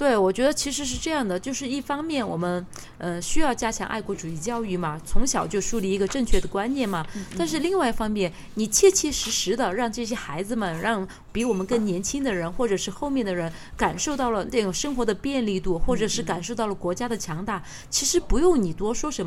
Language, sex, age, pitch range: Chinese, female, 20-39, 180-255 Hz